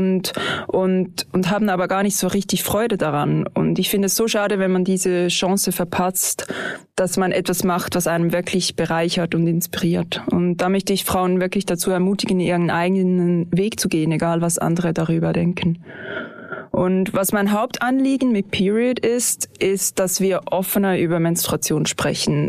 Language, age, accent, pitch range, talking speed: German, 20-39, German, 175-195 Hz, 170 wpm